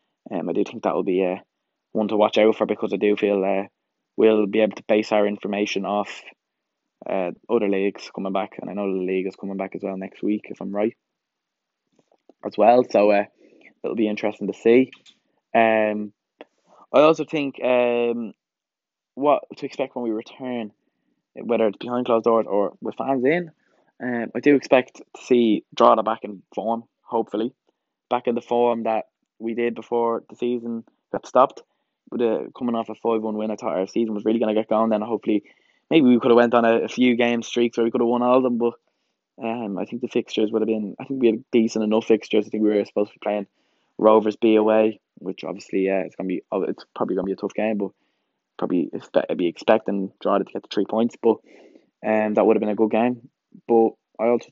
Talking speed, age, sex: 220 wpm, 10-29, male